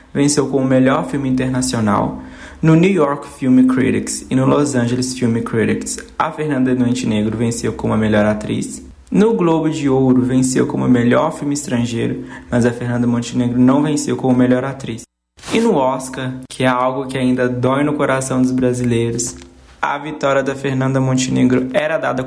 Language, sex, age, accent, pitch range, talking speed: Portuguese, male, 20-39, Brazilian, 120-145 Hz, 170 wpm